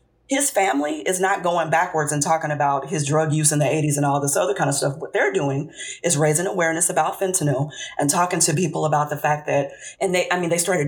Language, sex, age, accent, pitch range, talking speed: English, female, 30-49, American, 150-180 Hz, 245 wpm